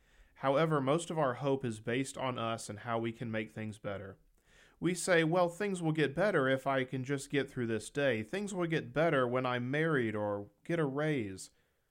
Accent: American